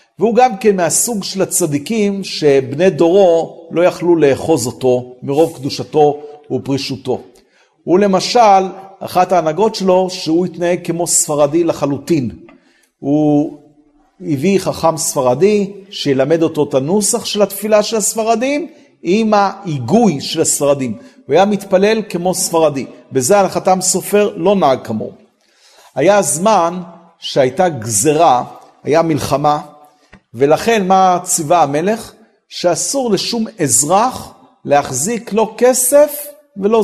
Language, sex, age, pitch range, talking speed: Hebrew, male, 50-69, 155-215 Hz, 110 wpm